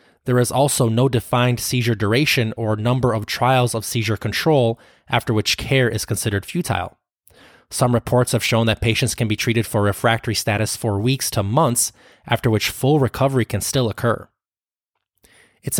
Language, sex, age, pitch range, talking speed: English, male, 20-39, 110-125 Hz, 165 wpm